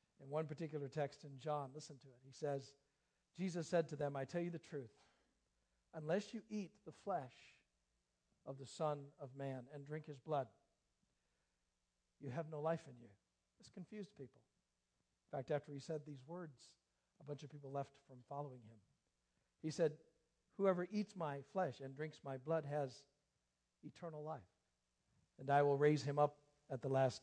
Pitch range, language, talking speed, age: 125-165 Hz, English, 175 wpm, 60-79